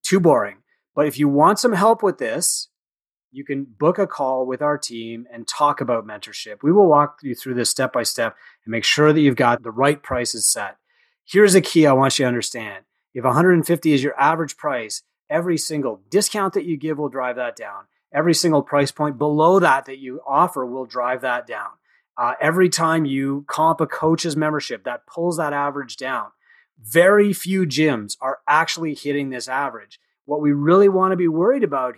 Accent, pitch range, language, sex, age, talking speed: American, 125-160 Hz, English, male, 30-49, 200 wpm